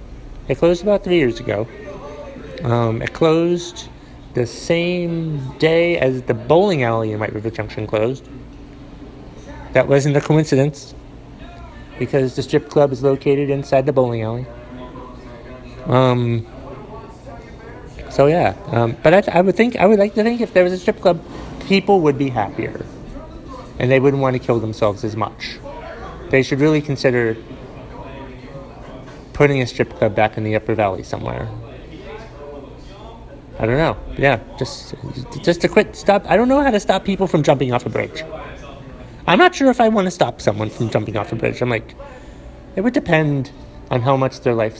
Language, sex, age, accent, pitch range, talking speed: English, male, 30-49, American, 120-155 Hz, 170 wpm